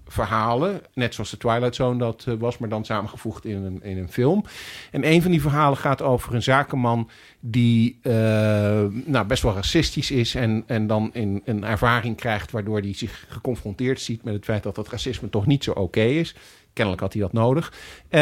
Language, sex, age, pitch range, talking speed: Dutch, male, 50-69, 105-135 Hz, 185 wpm